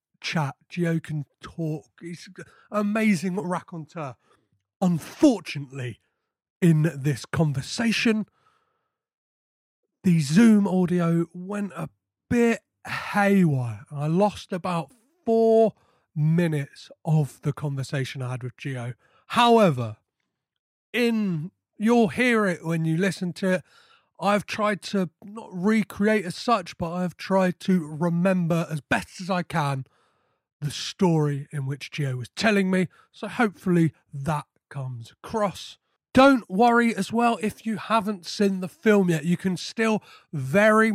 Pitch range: 150-205 Hz